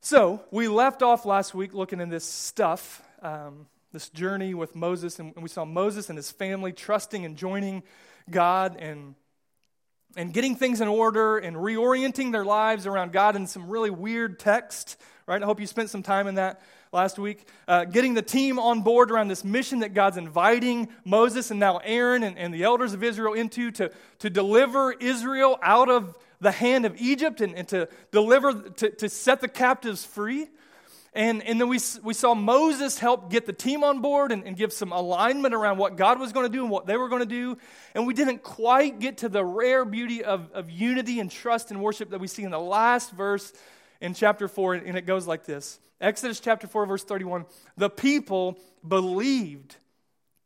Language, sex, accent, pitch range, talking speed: English, male, American, 185-240 Hz, 200 wpm